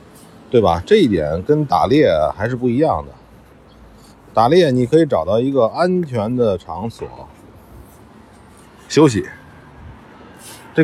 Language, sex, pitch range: Chinese, male, 95-145 Hz